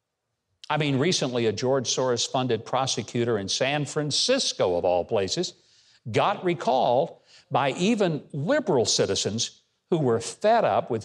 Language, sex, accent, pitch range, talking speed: English, male, American, 120-175 Hz, 135 wpm